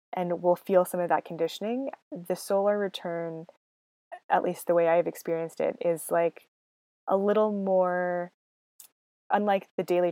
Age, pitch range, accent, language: 20-39, 165-190 Hz, American, English